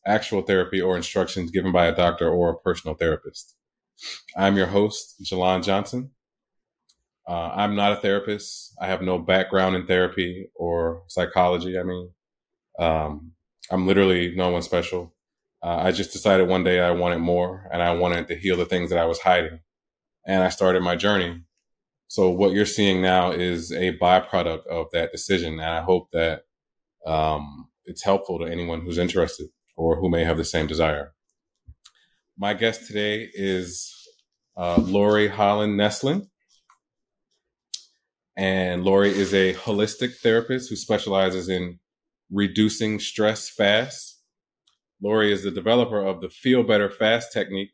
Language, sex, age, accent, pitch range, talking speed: English, male, 20-39, American, 90-105 Hz, 155 wpm